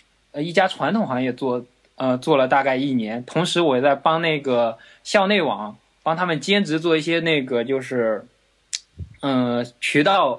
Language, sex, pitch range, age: Chinese, male, 135-200 Hz, 20-39